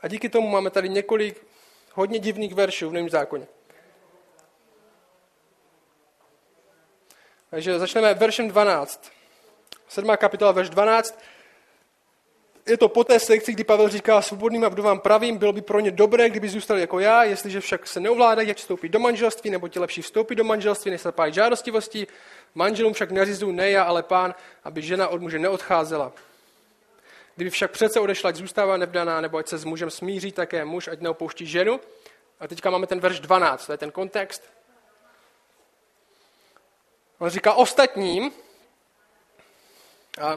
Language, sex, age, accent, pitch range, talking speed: Czech, male, 20-39, native, 185-220 Hz, 155 wpm